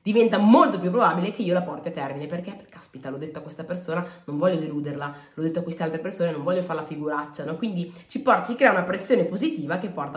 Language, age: Italian, 20-39